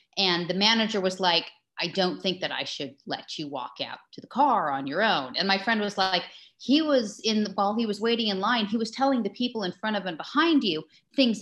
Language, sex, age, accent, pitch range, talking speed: English, female, 30-49, American, 165-220 Hz, 250 wpm